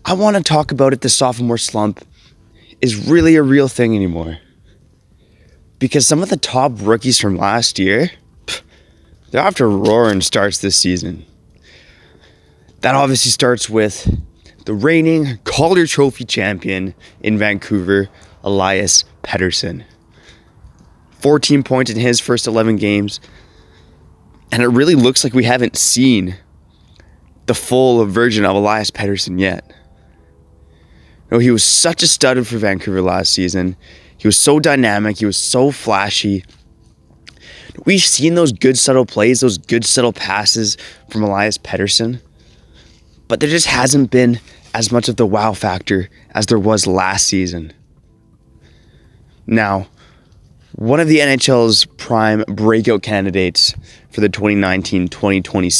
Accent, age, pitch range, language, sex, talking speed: American, 20-39, 95-125 Hz, English, male, 130 wpm